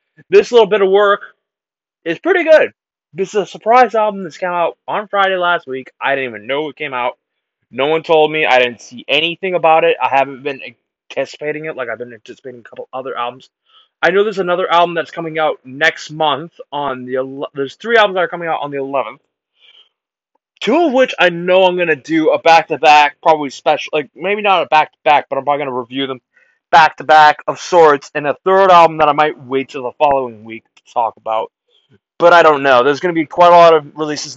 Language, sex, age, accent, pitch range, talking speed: English, male, 20-39, American, 135-175 Hz, 230 wpm